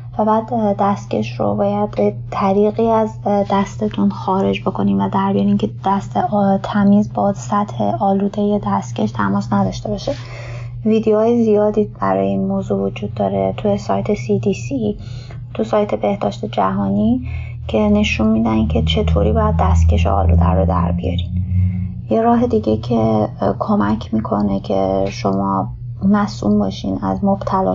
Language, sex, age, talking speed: Persian, female, 20-39, 135 wpm